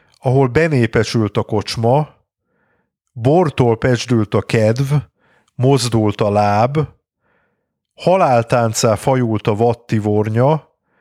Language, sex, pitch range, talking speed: Hungarian, male, 110-135 Hz, 85 wpm